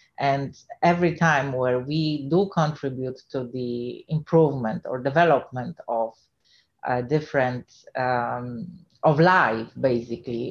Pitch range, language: 140-185 Hz, English